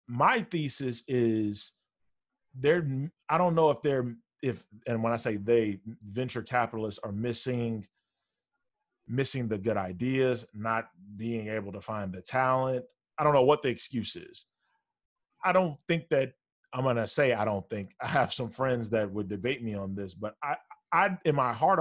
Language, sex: English, male